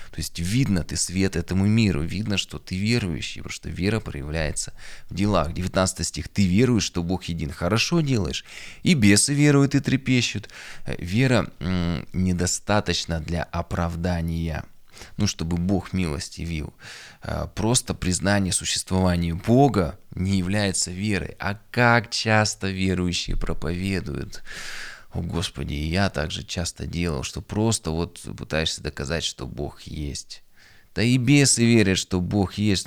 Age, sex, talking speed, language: 20-39, male, 135 wpm, Russian